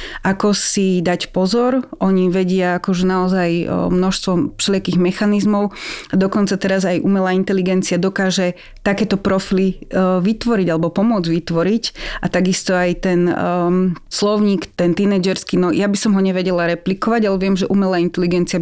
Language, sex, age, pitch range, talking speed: Slovak, female, 30-49, 175-195 Hz, 135 wpm